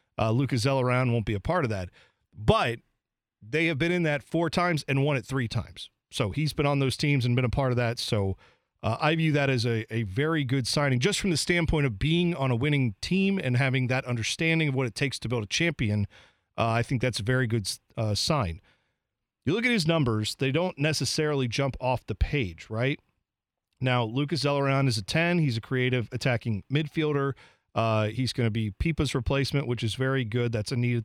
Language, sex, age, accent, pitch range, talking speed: English, male, 40-59, American, 115-150 Hz, 220 wpm